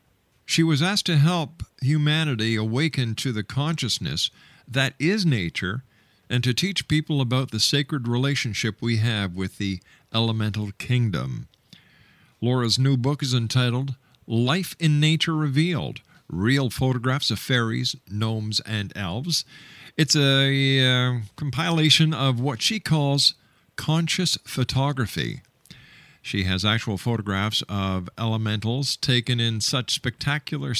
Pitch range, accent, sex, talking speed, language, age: 110-145 Hz, American, male, 125 wpm, English, 50-69